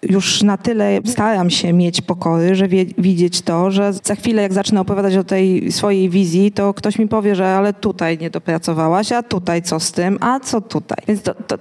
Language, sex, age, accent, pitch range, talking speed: Polish, female, 20-39, native, 180-210 Hz, 200 wpm